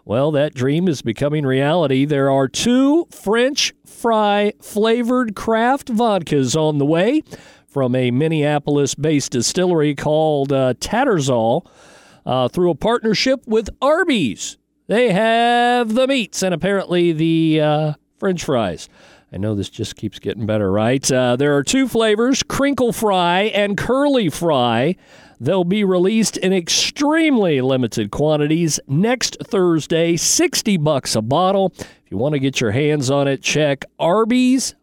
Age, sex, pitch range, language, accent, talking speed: 50-69, male, 135-205 Hz, English, American, 140 wpm